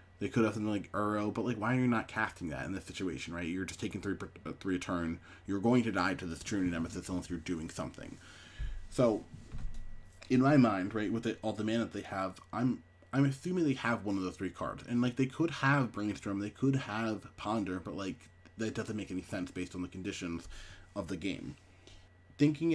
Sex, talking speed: male, 225 wpm